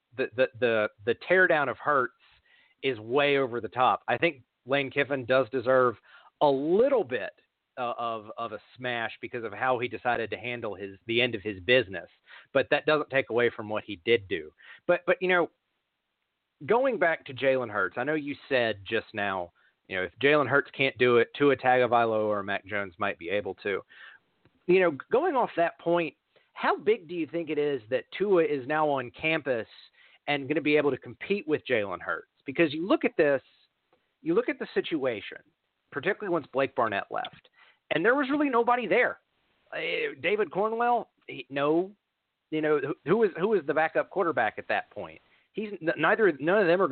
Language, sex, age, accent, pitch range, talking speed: English, male, 40-59, American, 120-175 Hz, 195 wpm